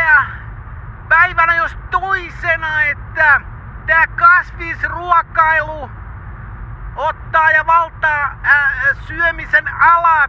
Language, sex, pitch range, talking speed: Finnish, male, 315-350 Hz, 75 wpm